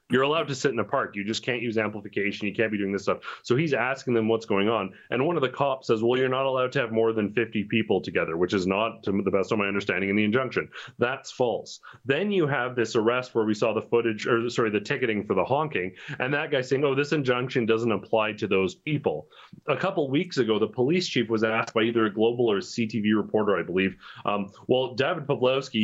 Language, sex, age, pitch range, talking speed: English, male, 30-49, 110-135 Hz, 250 wpm